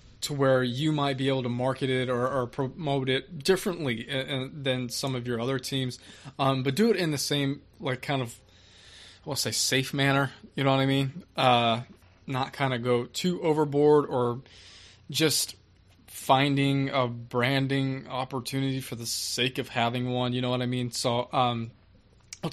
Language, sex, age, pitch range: English, male, 20-39, 115-140 Hz